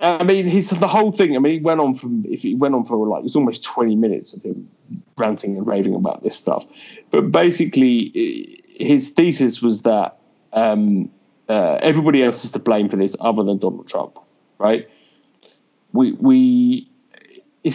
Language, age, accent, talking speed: English, 20-39, British, 185 wpm